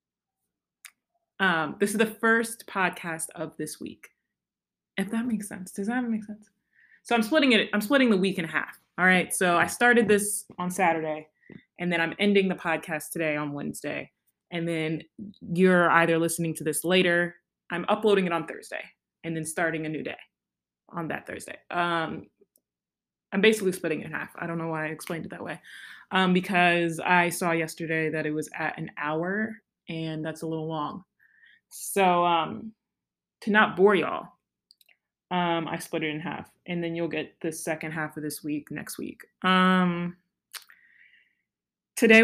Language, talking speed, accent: English, 175 wpm, American